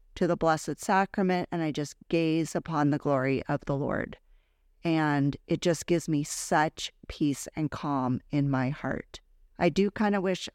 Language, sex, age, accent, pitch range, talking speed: English, female, 40-59, American, 150-180 Hz, 175 wpm